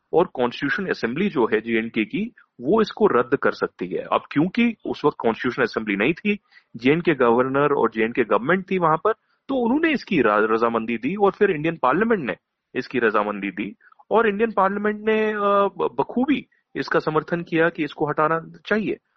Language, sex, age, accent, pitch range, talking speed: Hindi, male, 30-49, native, 125-200 Hz, 170 wpm